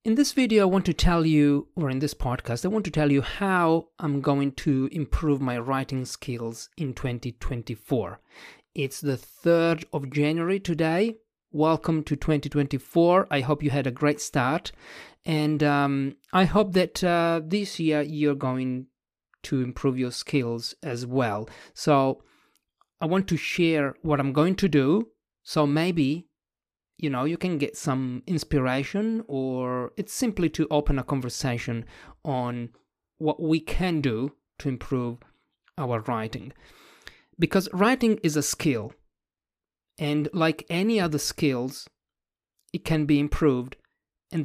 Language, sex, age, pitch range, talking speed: English, male, 40-59, 130-165 Hz, 145 wpm